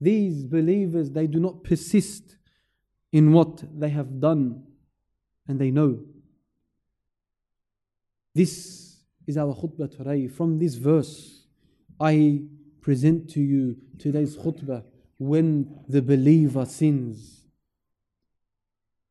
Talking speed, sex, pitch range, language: 100 wpm, male, 140-185 Hz, English